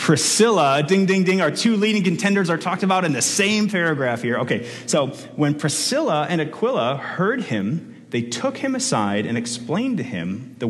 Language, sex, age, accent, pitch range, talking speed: English, male, 30-49, American, 120-160 Hz, 185 wpm